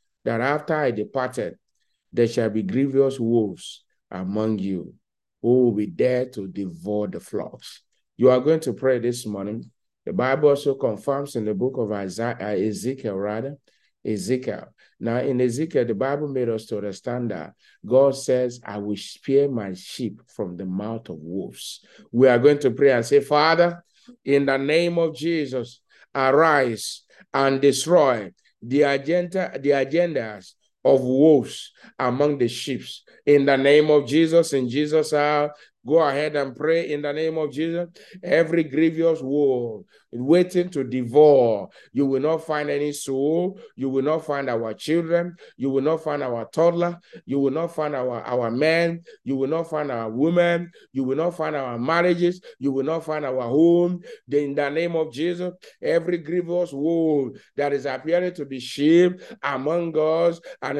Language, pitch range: English, 125-160 Hz